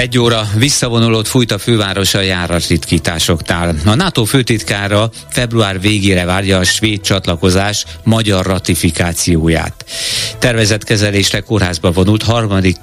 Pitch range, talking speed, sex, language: 90-110 Hz, 110 wpm, male, Hungarian